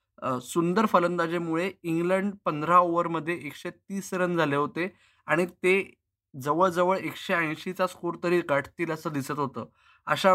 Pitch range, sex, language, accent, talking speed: 150-175 Hz, male, Marathi, native, 130 wpm